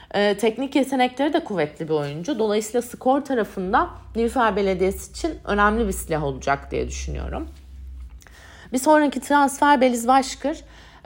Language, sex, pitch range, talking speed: Turkish, female, 175-255 Hz, 125 wpm